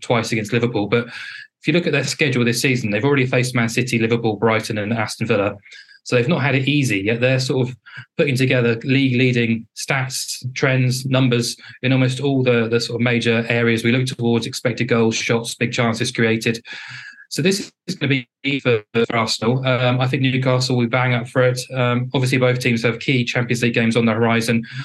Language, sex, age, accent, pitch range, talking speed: English, male, 20-39, British, 115-130 Hz, 210 wpm